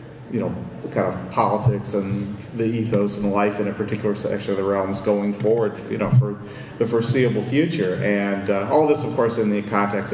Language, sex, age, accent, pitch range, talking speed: English, male, 40-59, American, 100-115 Hz, 205 wpm